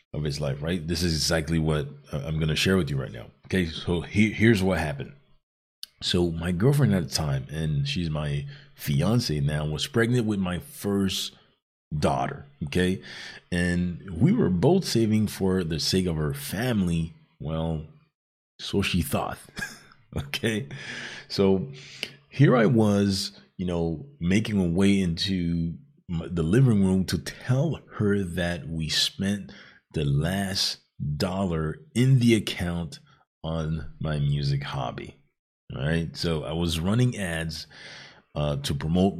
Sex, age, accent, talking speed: male, 30-49, American, 145 wpm